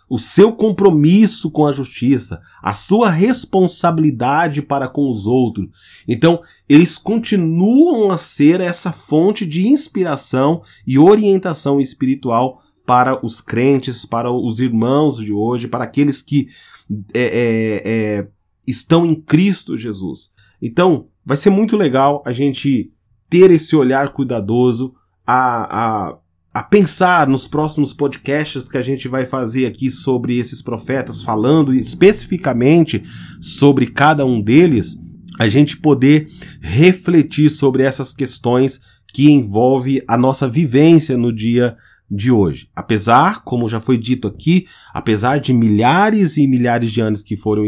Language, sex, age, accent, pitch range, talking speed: Portuguese, male, 30-49, Brazilian, 115-155 Hz, 130 wpm